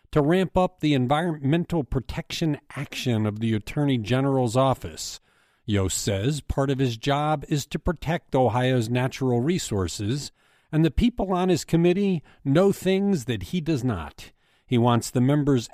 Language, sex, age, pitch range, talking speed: English, male, 50-69, 105-155 Hz, 155 wpm